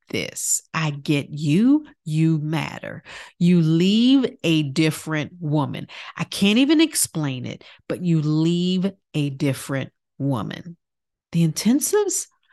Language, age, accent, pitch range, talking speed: English, 50-69, American, 160-230 Hz, 115 wpm